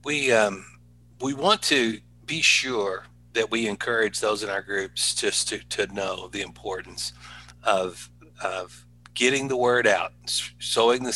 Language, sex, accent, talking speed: English, male, American, 155 wpm